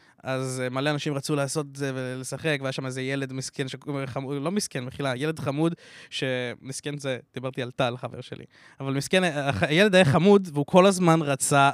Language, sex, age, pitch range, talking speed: Hebrew, male, 20-39, 135-155 Hz, 175 wpm